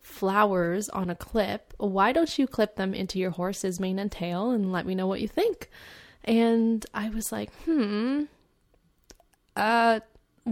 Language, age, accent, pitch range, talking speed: English, 10-29, American, 190-255 Hz, 160 wpm